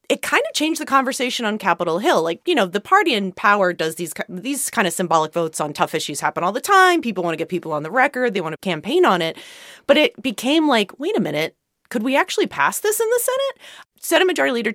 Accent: American